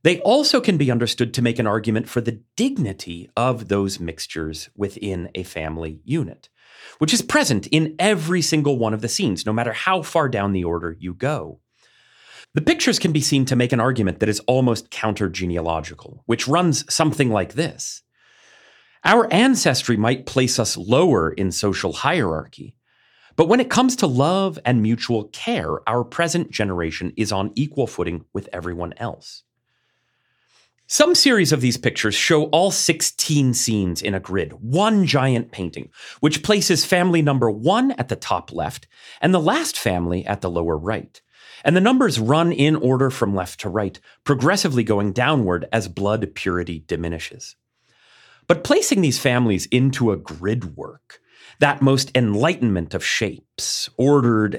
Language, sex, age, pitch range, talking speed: English, male, 30-49, 95-155 Hz, 160 wpm